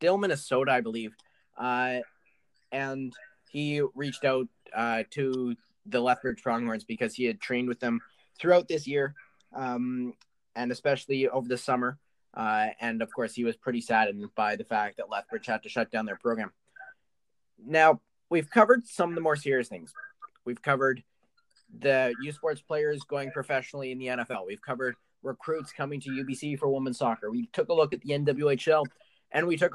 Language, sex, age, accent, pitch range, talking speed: English, male, 20-39, American, 125-150 Hz, 175 wpm